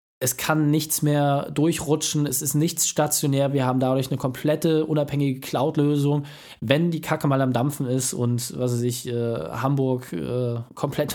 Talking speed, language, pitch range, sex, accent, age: 165 wpm, German, 125-155 Hz, male, German, 20-39